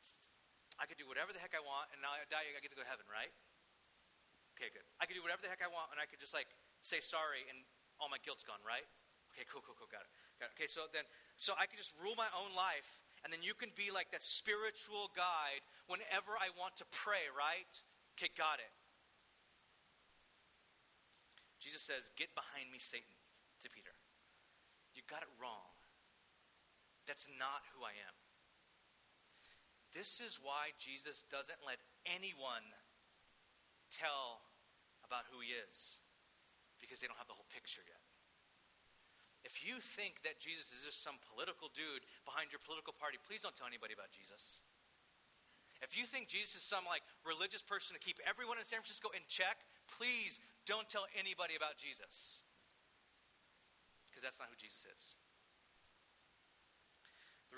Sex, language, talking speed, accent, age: male, English, 170 wpm, American, 30-49